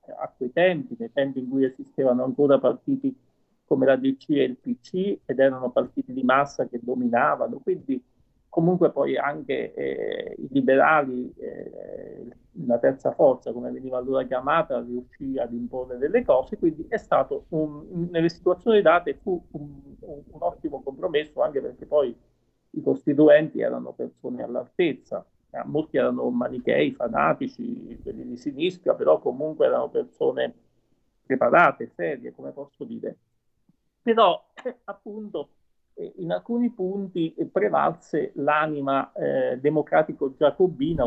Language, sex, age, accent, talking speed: Italian, male, 40-59, native, 130 wpm